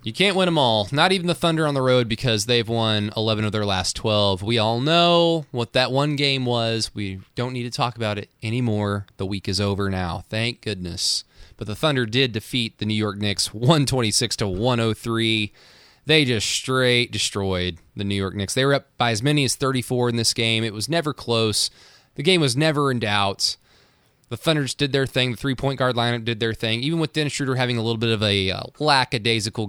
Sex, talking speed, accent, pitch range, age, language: male, 215 wpm, American, 105-130 Hz, 20-39, English